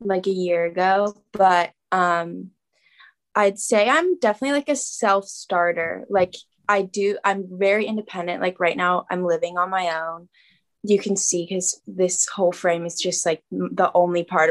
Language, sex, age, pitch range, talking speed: English, female, 10-29, 175-220 Hz, 165 wpm